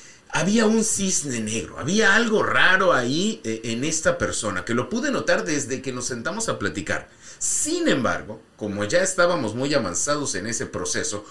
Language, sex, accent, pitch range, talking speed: English, male, Mexican, 110-170 Hz, 165 wpm